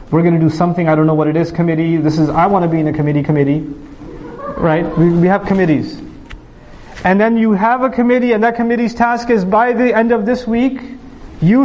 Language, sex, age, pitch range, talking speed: English, male, 30-49, 170-255 Hz, 230 wpm